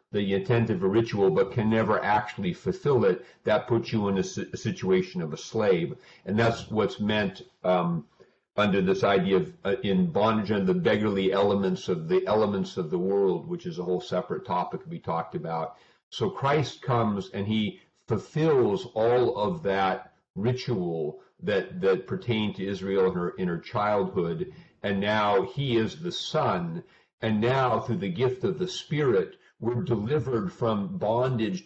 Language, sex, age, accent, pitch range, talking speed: English, male, 50-69, American, 95-130 Hz, 170 wpm